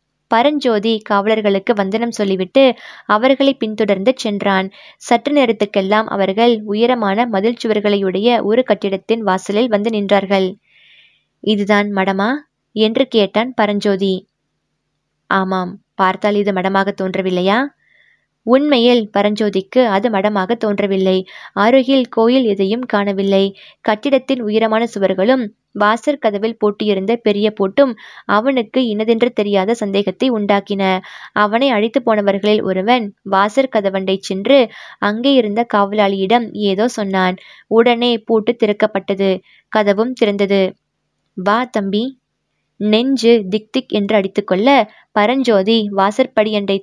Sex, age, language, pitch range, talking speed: female, 20-39, Tamil, 195-235 Hz, 95 wpm